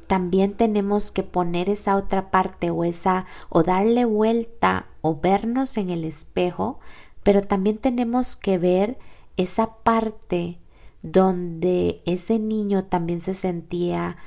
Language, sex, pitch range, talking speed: Spanish, female, 165-195 Hz, 120 wpm